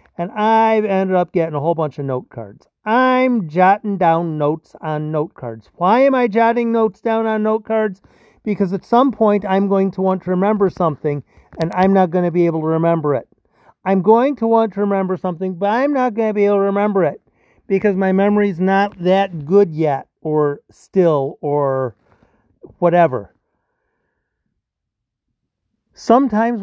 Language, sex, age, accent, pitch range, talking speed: English, male, 50-69, American, 155-205 Hz, 175 wpm